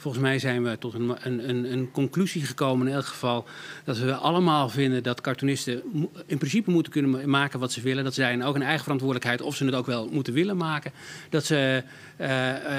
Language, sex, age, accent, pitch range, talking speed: Dutch, male, 40-59, Dutch, 130-160 Hz, 210 wpm